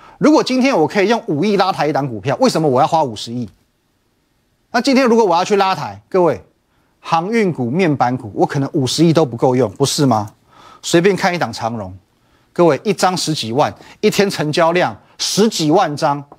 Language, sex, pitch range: Chinese, male, 140-200 Hz